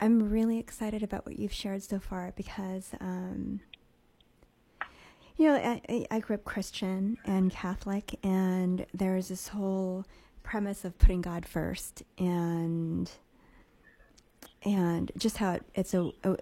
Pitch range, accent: 170-200 Hz, American